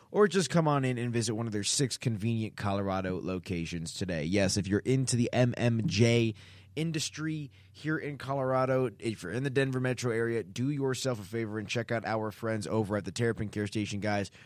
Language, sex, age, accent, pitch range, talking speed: English, male, 20-39, American, 105-130 Hz, 200 wpm